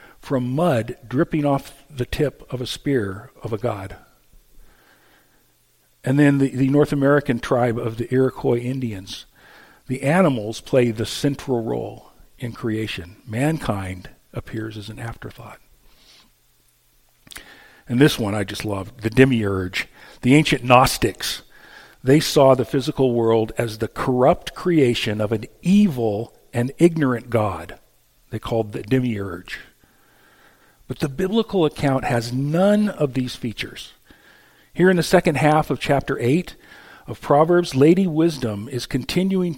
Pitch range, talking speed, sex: 110-150 Hz, 135 wpm, male